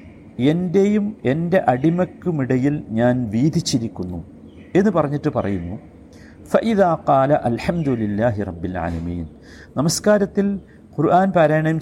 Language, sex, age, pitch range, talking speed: Malayalam, male, 50-69, 105-165 Hz, 95 wpm